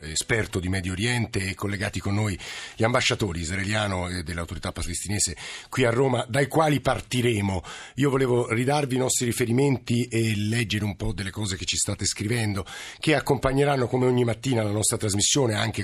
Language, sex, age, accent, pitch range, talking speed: Italian, male, 50-69, native, 95-120 Hz, 170 wpm